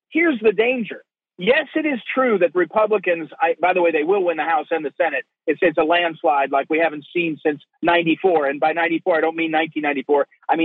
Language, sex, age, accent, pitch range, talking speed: English, male, 50-69, American, 185-270 Hz, 220 wpm